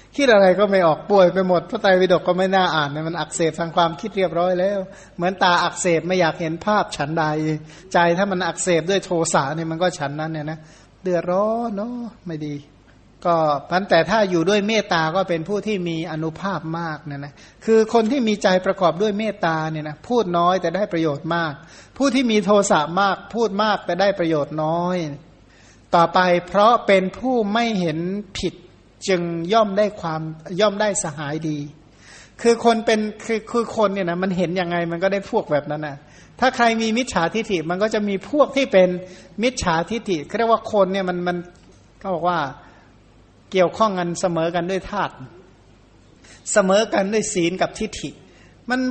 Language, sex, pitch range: Thai, male, 160-210 Hz